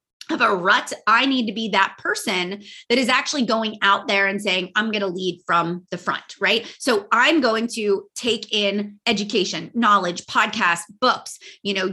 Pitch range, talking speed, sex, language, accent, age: 205-280 Hz, 185 wpm, female, English, American, 30-49